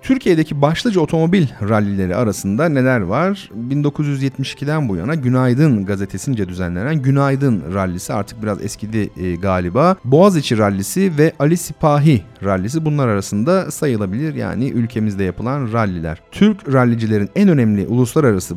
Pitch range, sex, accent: 100-150 Hz, male, native